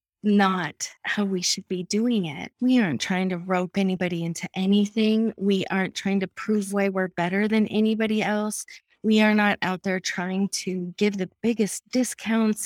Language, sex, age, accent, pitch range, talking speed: English, female, 20-39, American, 180-210 Hz, 175 wpm